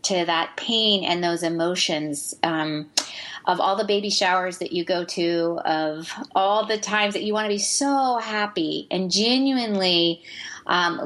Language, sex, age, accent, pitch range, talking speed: English, female, 30-49, American, 170-220 Hz, 155 wpm